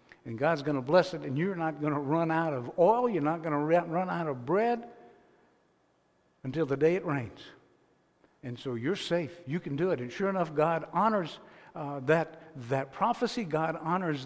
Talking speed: 200 wpm